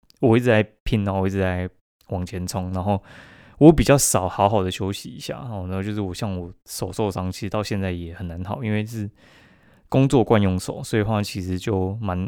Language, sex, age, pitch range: Chinese, male, 20-39, 95-120 Hz